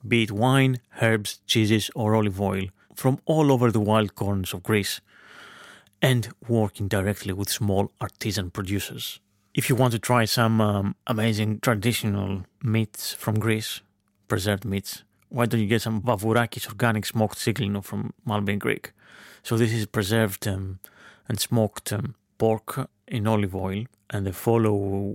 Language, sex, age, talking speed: English, male, 30-49, 155 wpm